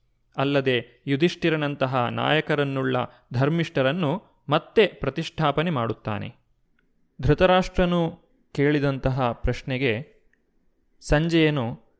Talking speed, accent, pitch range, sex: 55 wpm, native, 120-155 Hz, male